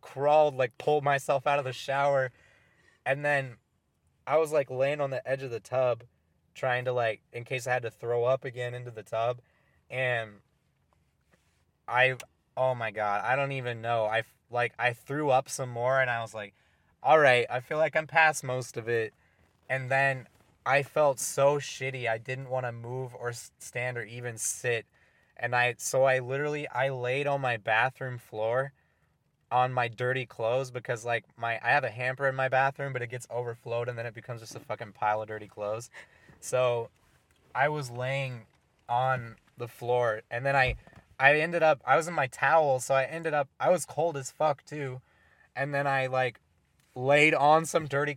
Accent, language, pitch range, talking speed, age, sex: American, English, 120-140 Hz, 195 wpm, 20-39, male